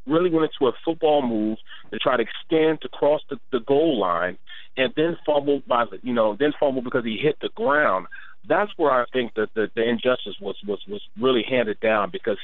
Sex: male